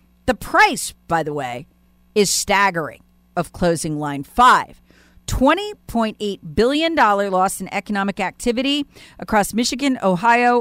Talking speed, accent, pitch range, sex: 115 wpm, American, 165-250 Hz, female